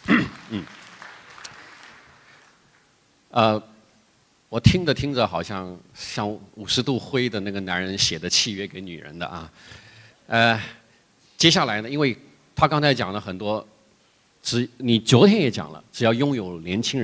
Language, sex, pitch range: Chinese, male, 95-120 Hz